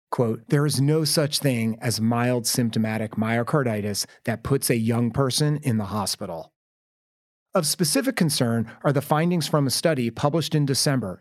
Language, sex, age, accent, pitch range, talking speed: English, male, 30-49, American, 120-160 Hz, 160 wpm